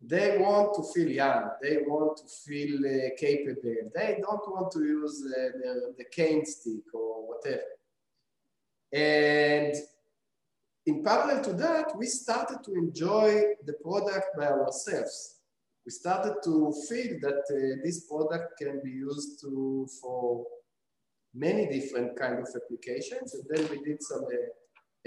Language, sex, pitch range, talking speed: English, male, 135-170 Hz, 145 wpm